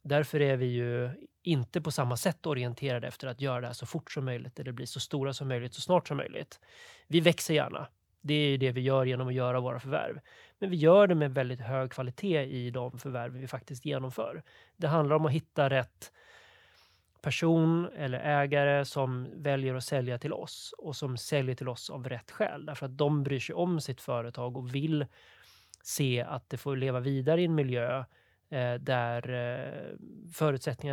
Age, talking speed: 30-49, 195 wpm